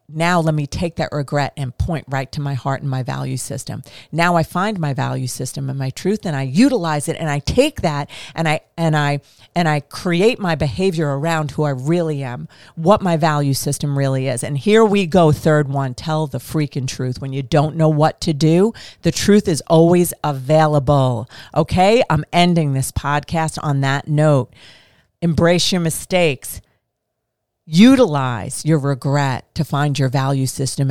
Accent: American